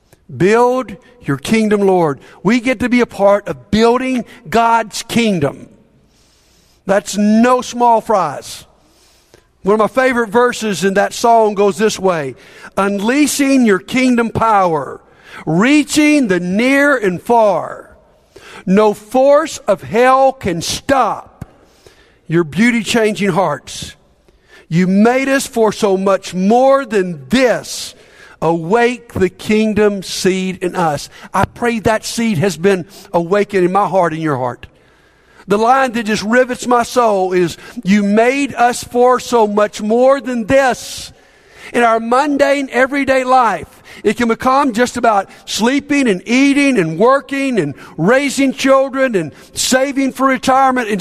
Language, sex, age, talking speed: English, male, 50-69, 135 wpm